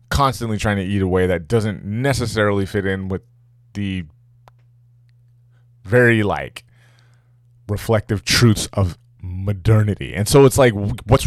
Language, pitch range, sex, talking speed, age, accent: English, 100-120 Hz, male, 120 wpm, 20-39, American